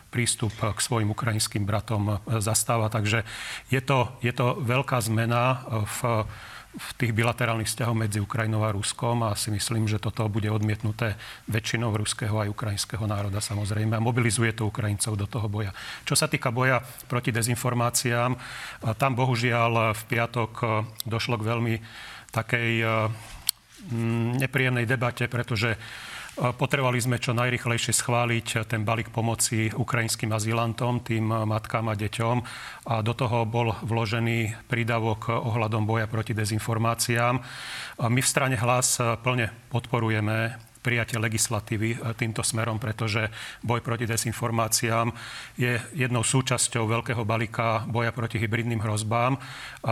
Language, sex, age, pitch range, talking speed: Slovak, male, 40-59, 110-120 Hz, 130 wpm